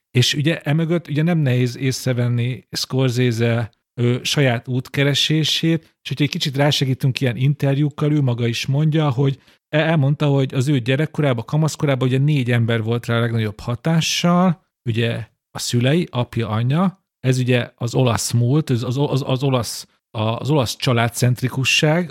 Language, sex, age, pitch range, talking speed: Hungarian, male, 40-59, 120-150 Hz, 145 wpm